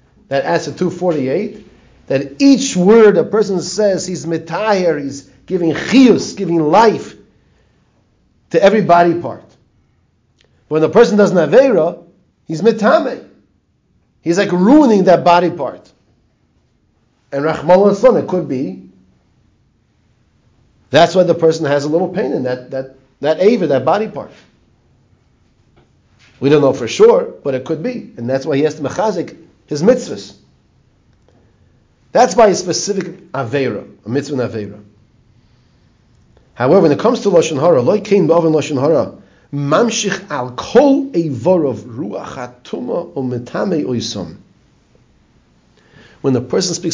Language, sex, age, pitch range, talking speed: English, male, 50-69, 125-190 Hz, 125 wpm